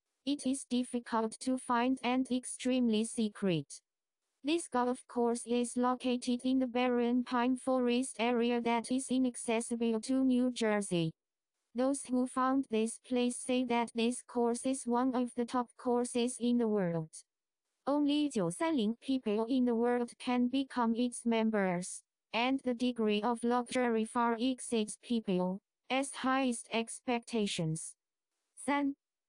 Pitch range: 230-255 Hz